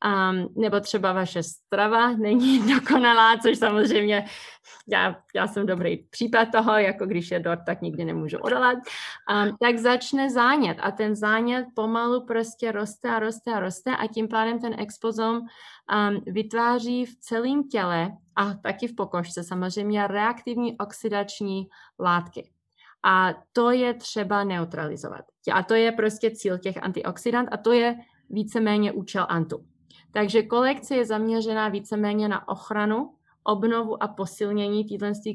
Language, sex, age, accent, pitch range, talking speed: Czech, female, 20-39, native, 190-230 Hz, 145 wpm